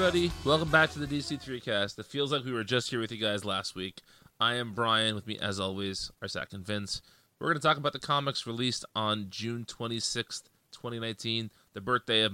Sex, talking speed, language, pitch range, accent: male, 215 wpm, English, 105-140 Hz, American